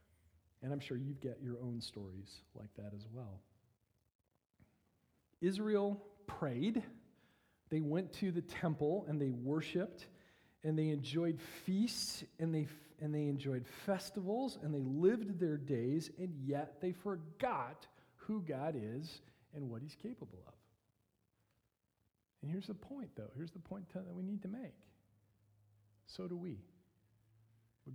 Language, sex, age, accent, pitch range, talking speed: English, male, 40-59, American, 110-160 Hz, 145 wpm